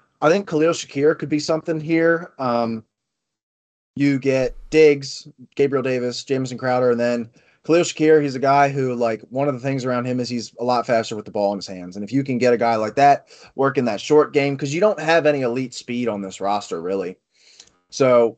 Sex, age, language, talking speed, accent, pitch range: male, 20-39, English, 220 wpm, American, 125-160 Hz